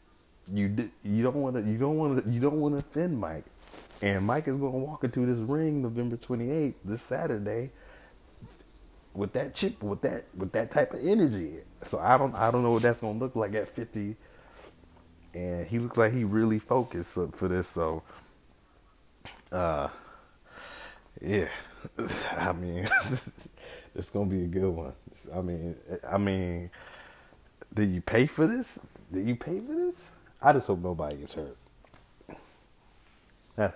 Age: 30-49